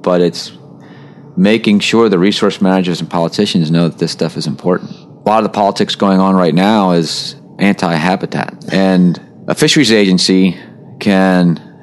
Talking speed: 155 wpm